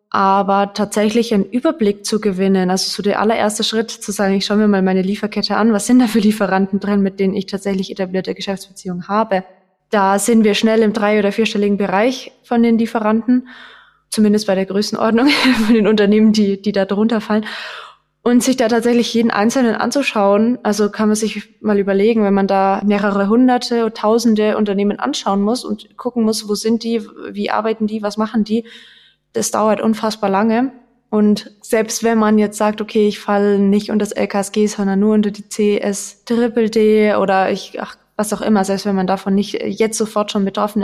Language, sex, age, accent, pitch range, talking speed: German, female, 20-39, German, 195-220 Hz, 190 wpm